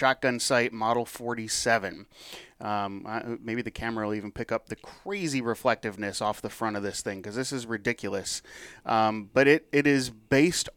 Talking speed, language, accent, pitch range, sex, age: 180 wpm, English, American, 105-125 Hz, male, 30-49